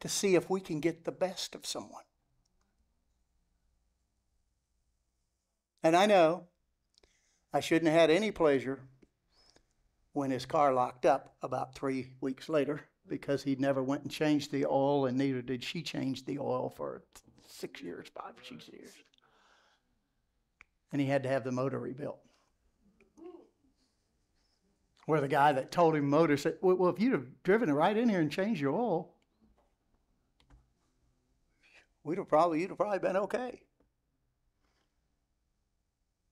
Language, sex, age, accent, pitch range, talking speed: English, male, 60-79, American, 130-180 Hz, 140 wpm